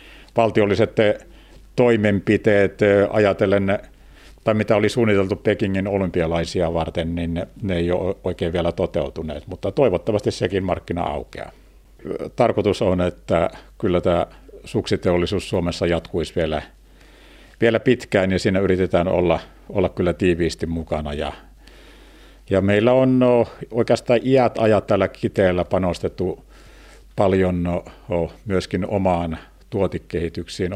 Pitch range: 85-105 Hz